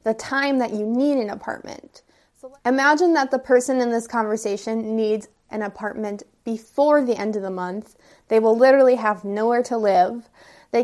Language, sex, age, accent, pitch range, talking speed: English, female, 20-39, American, 210-255 Hz, 170 wpm